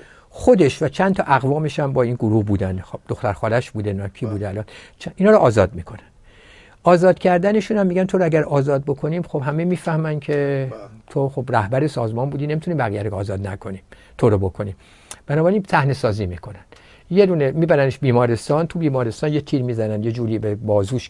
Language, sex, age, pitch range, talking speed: Persian, male, 60-79, 115-170 Hz, 175 wpm